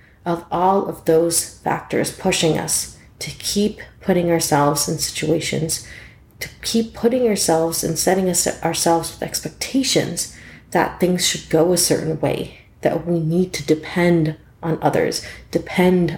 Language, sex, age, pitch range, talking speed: English, female, 40-59, 155-185 Hz, 135 wpm